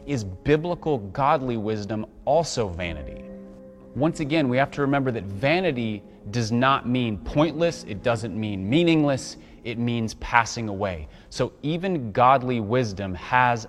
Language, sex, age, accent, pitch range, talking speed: English, male, 30-49, American, 105-140 Hz, 135 wpm